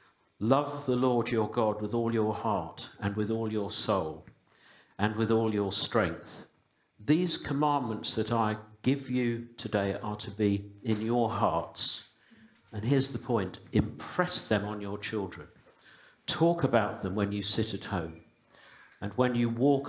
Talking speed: 160 wpm